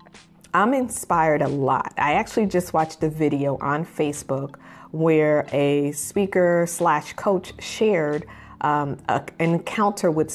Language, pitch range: English, 140-180 Hz